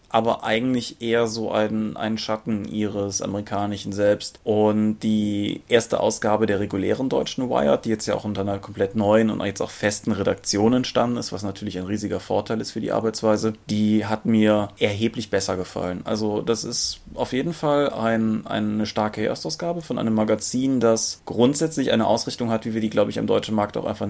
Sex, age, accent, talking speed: male, 30-49, German, 190 wpm